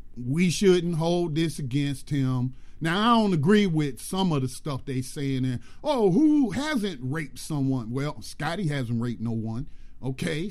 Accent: American